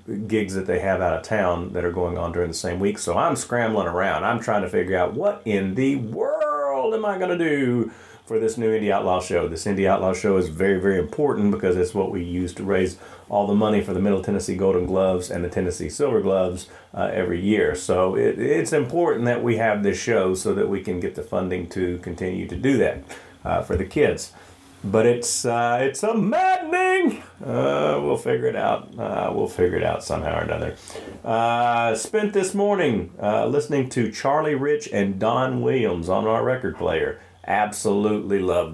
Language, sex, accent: English, male, American